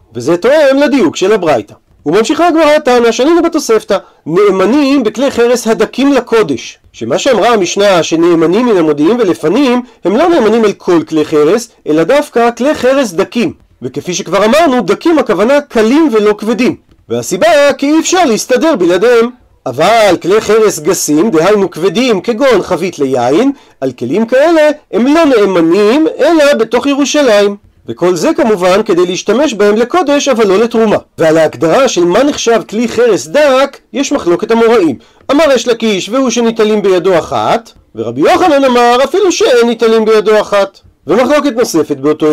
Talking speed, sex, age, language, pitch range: 150 wpm, male, 40-59, Hebrew, 185-280 Hz